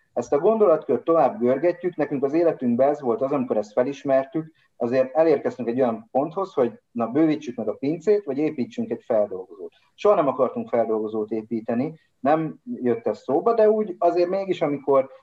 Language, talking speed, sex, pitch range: Hungarian, 170 wpm, male, 115-165 Hz